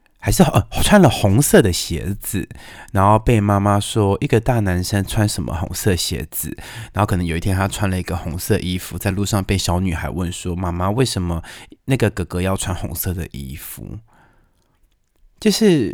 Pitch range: 95-130 Hz